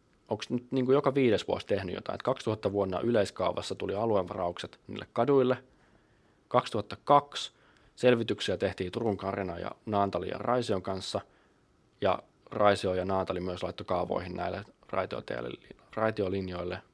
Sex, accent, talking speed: male, native, 120 wpm